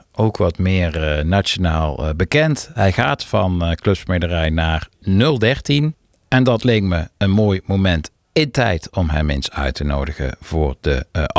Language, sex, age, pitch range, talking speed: Dutch, male, 50-69, 80-100 Hz, 170 wpm